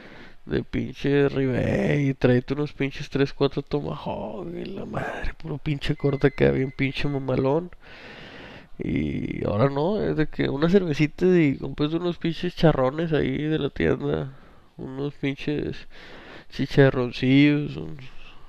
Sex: male